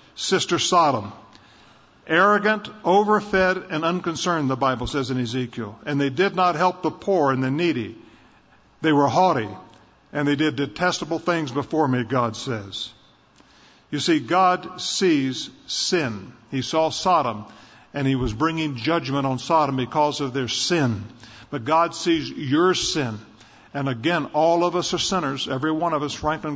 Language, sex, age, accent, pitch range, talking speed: English, male, 50-69, American, 135-165 Hz, 155 wpm